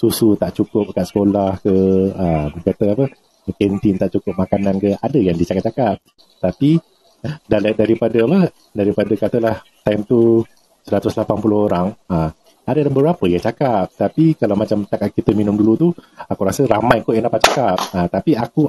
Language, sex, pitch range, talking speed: Malay, male, 100-125 Hz, 145 wpm